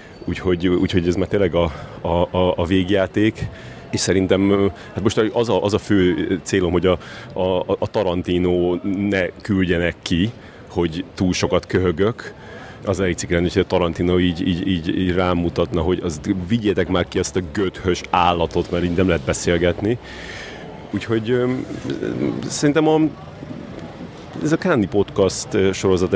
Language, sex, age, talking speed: Hungarian, male, 30-49, 145 wpm